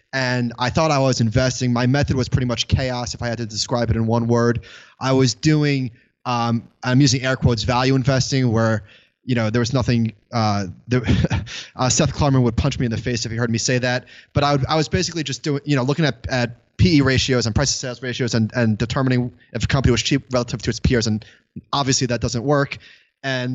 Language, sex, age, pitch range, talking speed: English, male, 20-39, 120-145 Hz, 235 wpm